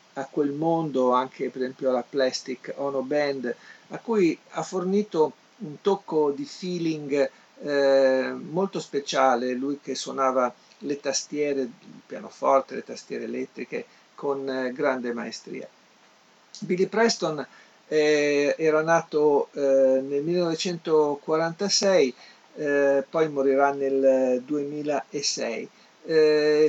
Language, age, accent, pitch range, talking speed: Italian, 50-69, native, 135-165 Hz, 110 wpm